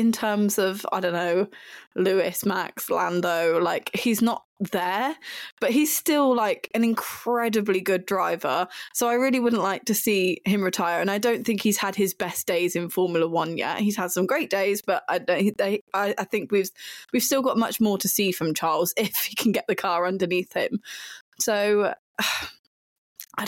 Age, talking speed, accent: 20-39, 190 wpm, British